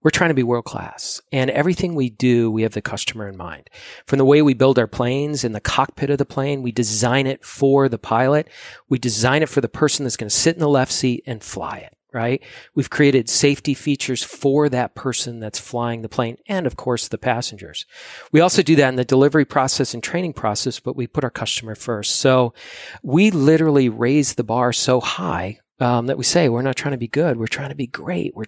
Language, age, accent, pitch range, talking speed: English, 40-59, American, 120-145 Hz, 230 wpm